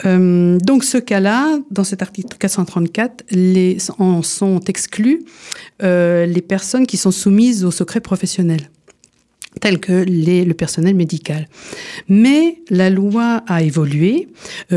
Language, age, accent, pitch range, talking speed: French, 50-69, French, 165-200 Hz, 135 wpm